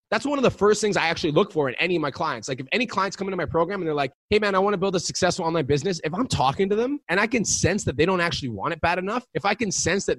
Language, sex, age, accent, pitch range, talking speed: English, male, 20-39, American, 155-200 Hz, 340 wpm